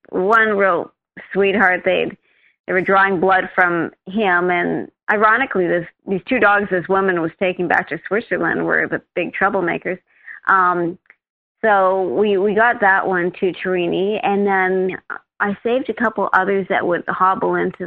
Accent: American